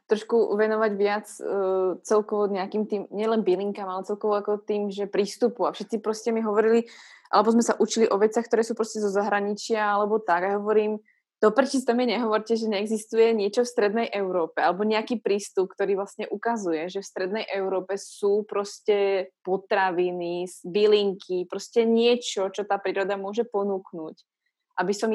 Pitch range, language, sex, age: 195-215 Hz, Slovak, female, 20-39